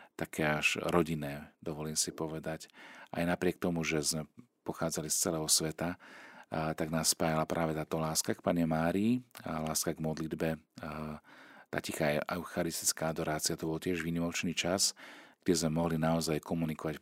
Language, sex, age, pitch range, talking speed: Slovak, male, 40-59, 80-85 Hz, 145 wpm